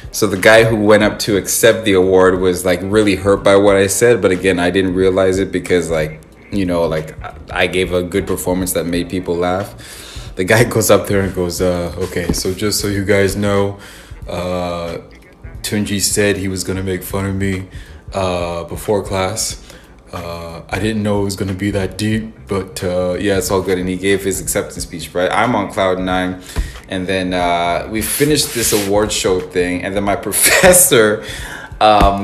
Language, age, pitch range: English, 20-39, 95-110 Hz